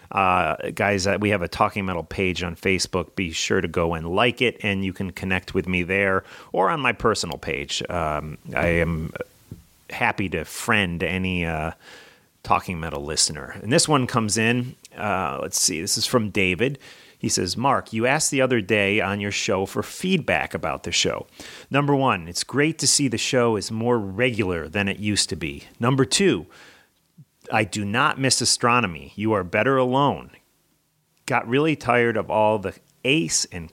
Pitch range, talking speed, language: 95-130 Hz, 185 wpm, English